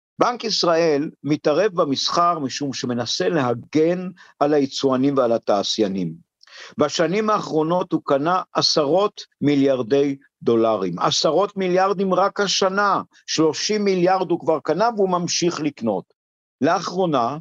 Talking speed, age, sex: 105 wpm, 50-69, male